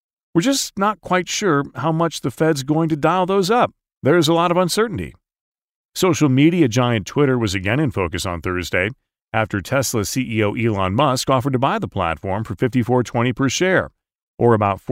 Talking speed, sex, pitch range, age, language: 185 wpm, male, 100-160 Hz, 40-59, English